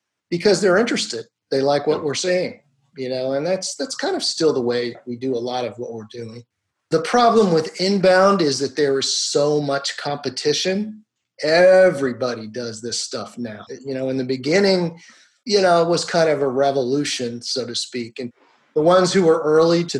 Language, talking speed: English, 195 wpm